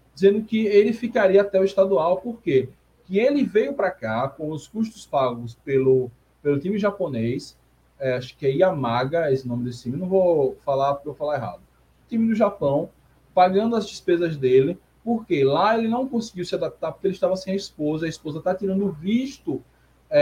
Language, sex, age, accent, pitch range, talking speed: Portuguese, male, 20-39, Brazilian, 140-205 Hz, 195 wpm